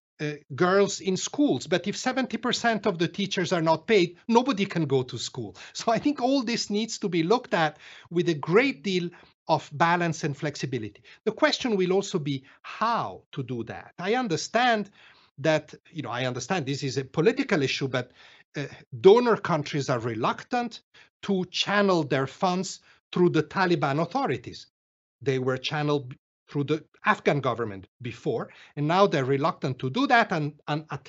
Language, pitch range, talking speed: English, 145-195 Hz, 170 wpm